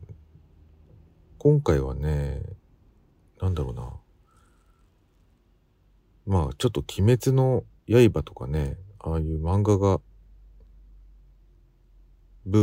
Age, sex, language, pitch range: 40-59, male, Japanese, 75-95 Hz